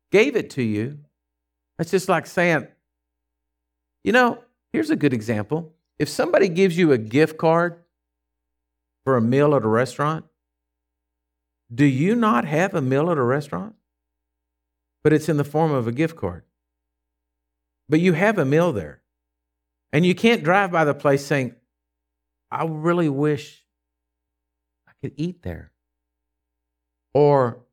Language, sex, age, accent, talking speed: English, male, 50-69, American, 145 wpm